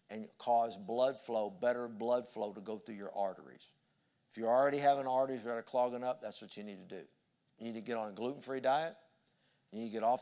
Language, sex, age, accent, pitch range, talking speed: English, male, 50-69, American, 115-130 Hz, 235 wpm